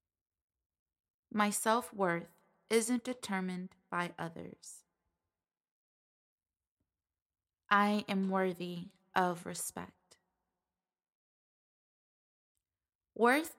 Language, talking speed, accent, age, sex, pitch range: English, 55 wpm, American, 20-39, female, 185-215 Hz